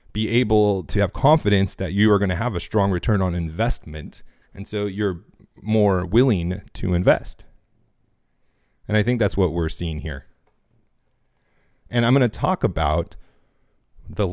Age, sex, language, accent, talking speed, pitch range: 30-49, male, English, American, 150 wpm, 90-115 Hz